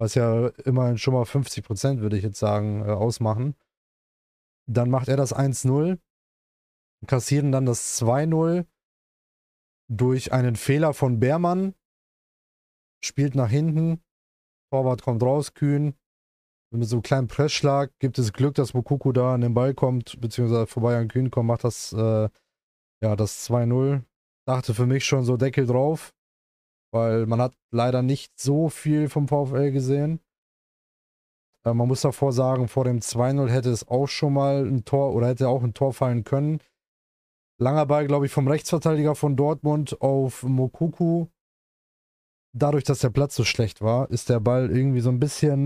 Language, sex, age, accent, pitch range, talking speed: German, male, 20-39, German, 120-145 Hz, 160 wpm